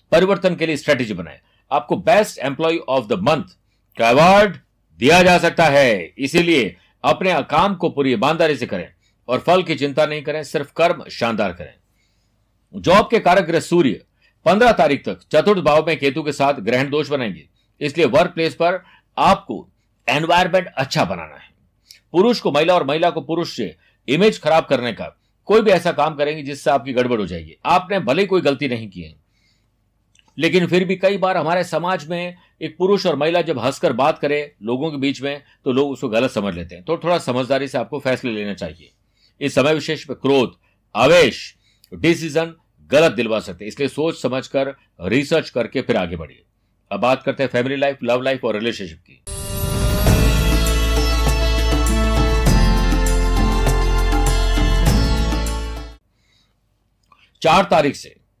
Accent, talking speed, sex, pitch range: native, 160 wpm, male, 105-165 Hz